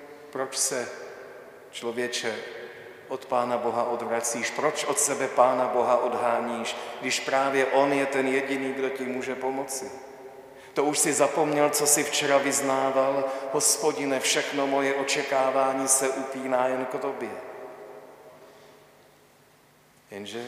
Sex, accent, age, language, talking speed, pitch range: male, native, 40-59, Czech, 120 wpm, 120-135 Hz